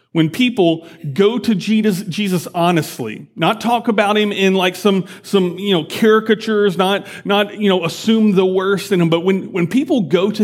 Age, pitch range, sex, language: 40-59, 170-210 Hz, male, English